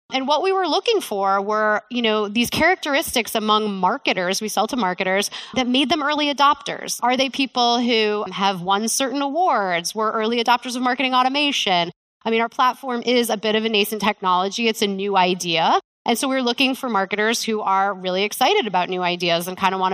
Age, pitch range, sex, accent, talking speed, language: 20-39, 200-260 Hz, female, American, 205 wpm, English